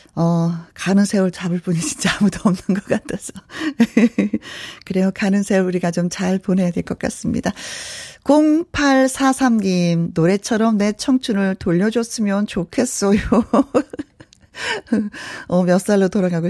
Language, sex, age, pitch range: Korean, female, 40-59, 175-235 Hz